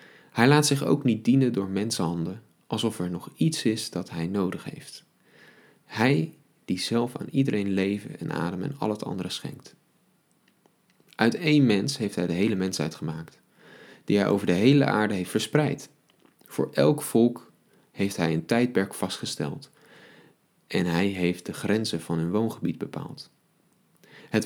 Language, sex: Dutch, male